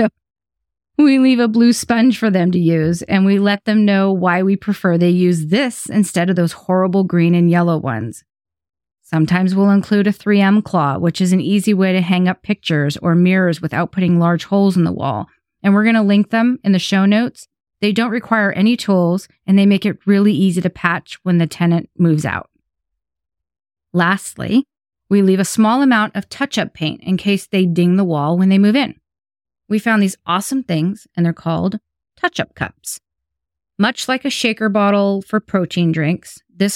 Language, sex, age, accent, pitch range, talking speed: English, female, 30-49, American, 170-205 Hz, 195 wpm